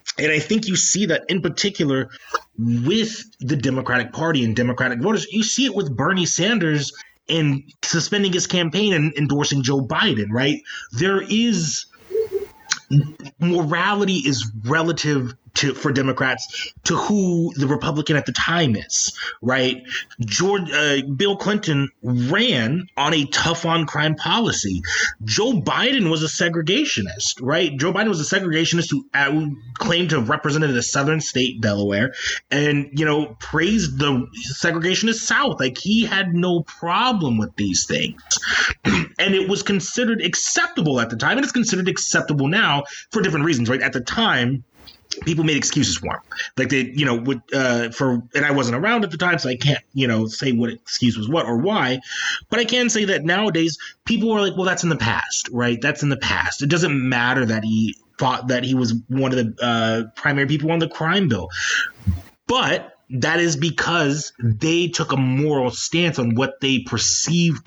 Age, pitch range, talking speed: 30-49, 125-175 Hz, 175 wpm